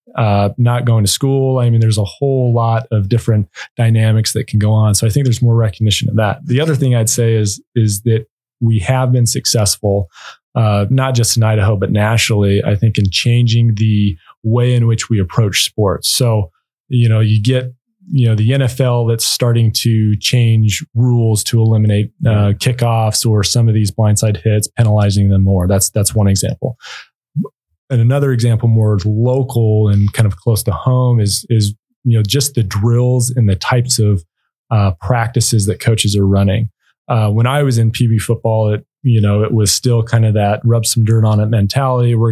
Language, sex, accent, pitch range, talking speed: English, male, American, 105-125 Hz, 195 wpm